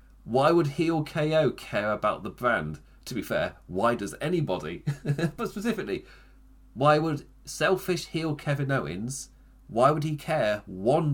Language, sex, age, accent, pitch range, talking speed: English, male, 30-49, British, 110-150 Hz, 145 wpm